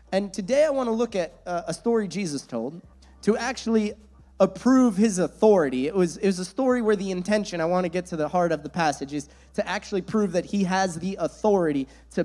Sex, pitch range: male, 155-210 Hz